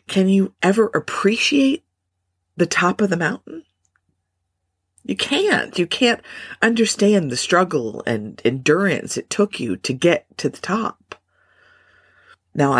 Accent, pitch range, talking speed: American, 105-170 Hz, 125 wpm